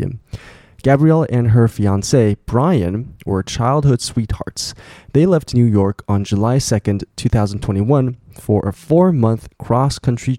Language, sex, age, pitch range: Chinese, male, 20-39, 100-125 Hz